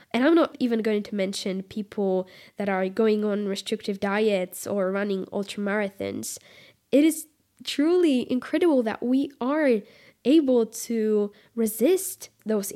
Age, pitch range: 10-29, 200-260 Hz